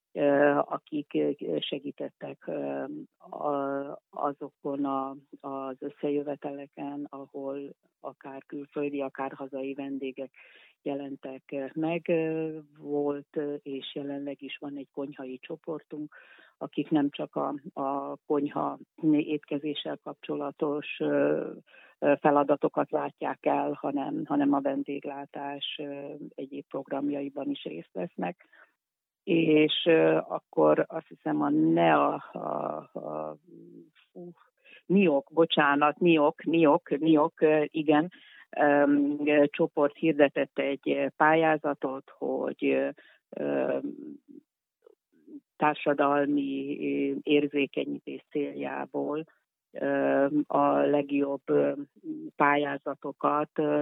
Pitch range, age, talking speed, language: 140-150 Hz, 40-59, 80 wpm, Hungarian